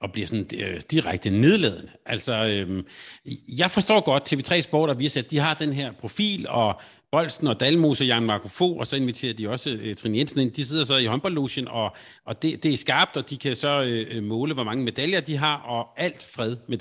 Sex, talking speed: male, 225 wpm